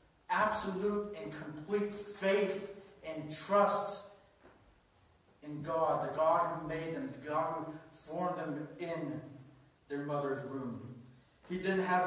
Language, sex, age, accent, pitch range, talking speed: English, male, 40-59, American, 155-185 Hz, 125 wpm